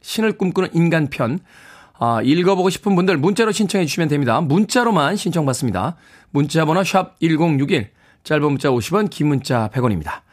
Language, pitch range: Korean, 120-160 Hz